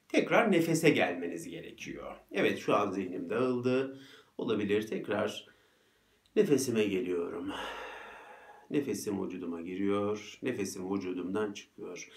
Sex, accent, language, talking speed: male, native, Turkish, 95 wpm